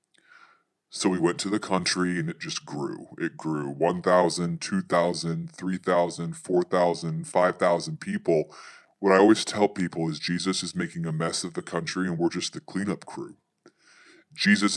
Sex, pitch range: female, 85-100 Hz